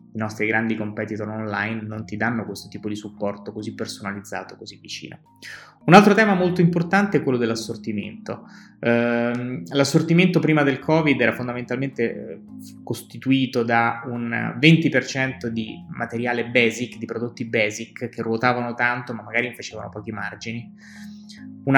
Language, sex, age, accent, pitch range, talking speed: Italian, male, 20-39, native, 110-125 Hz, 140 wpm